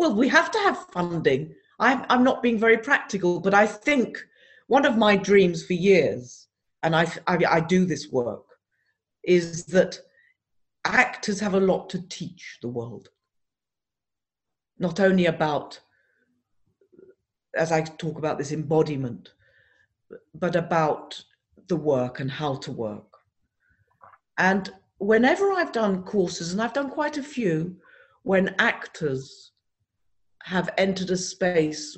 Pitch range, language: 155-225 Hz, English